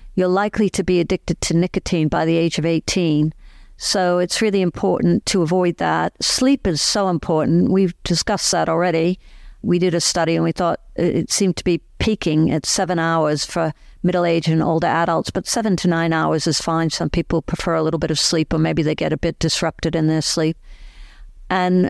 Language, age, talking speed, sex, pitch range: English, 50-69, 200 wpm, female, 165-190 Hz